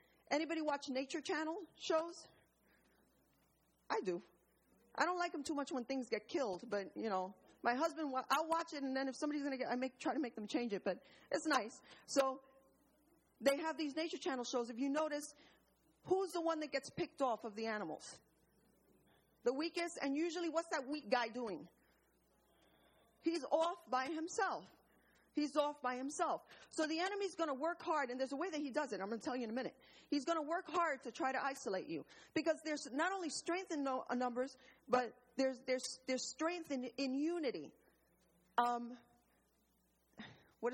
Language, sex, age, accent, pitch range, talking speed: English, female, 40-59, American, 250-320 Hz, 190 wpm